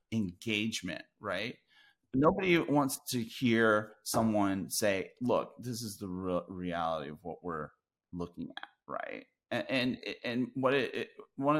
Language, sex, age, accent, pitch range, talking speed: English, male, 30-49, American, 95-130 Hz, 140 wpm